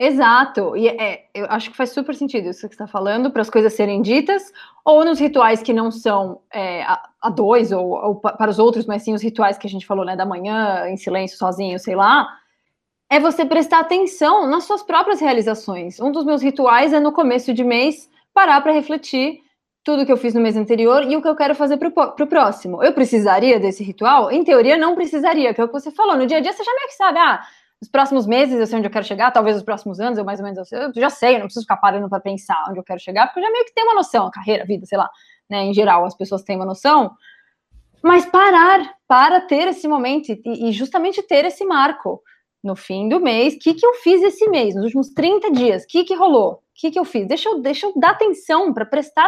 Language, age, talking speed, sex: Portuguese, 20-39, 250 wpm, female